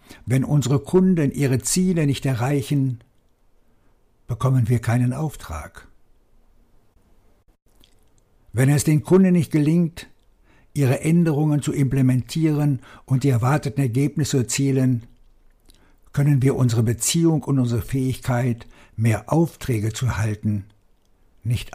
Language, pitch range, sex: German, 105-140 Hz, male